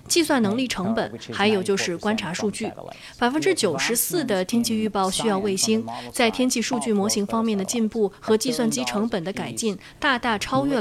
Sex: female